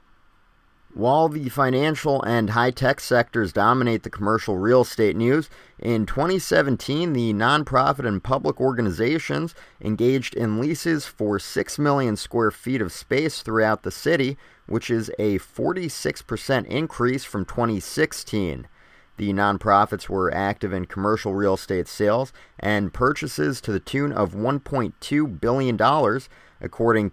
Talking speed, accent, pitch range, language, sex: 130 wpm, American, 100-130 Hz, English, male